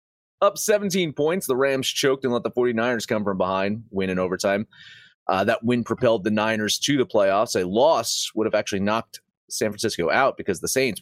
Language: English